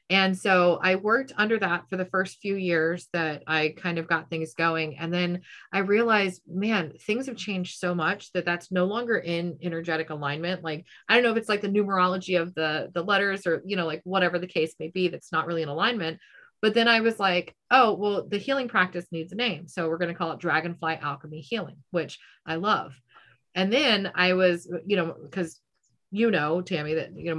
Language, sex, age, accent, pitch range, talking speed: English, female, 30-49, American, 165-205 Hz, 220 wpm